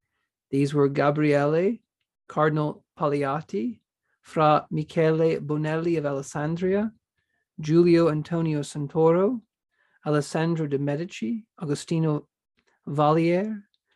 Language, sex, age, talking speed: English, male, 40-59, 75 wpm